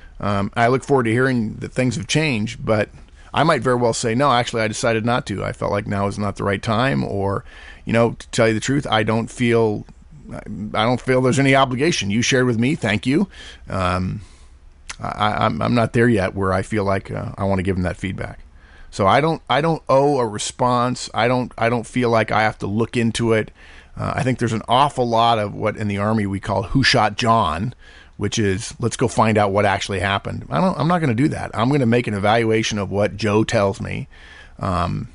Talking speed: 235 wpm